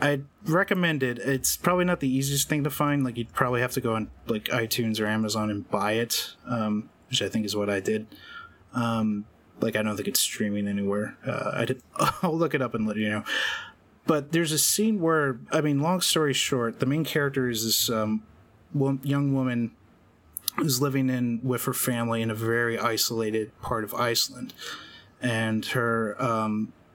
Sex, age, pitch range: male, 30-49, 110-135 Hz